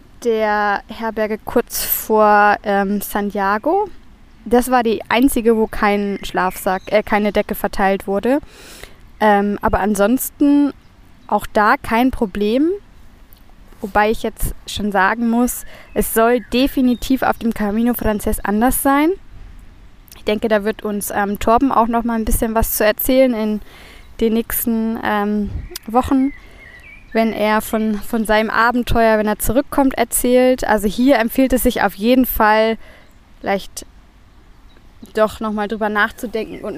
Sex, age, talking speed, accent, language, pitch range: female, 20-39, 135 wpm, German, German, 210-250 Hz